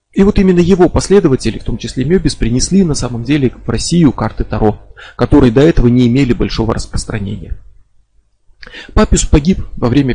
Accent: native